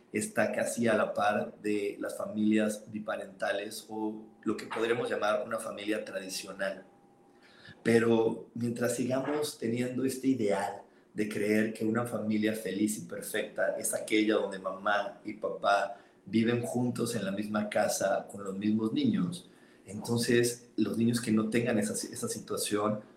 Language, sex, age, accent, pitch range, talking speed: Spanish, male, 40-59, Mexican, 105-120 Hz, 145 wpm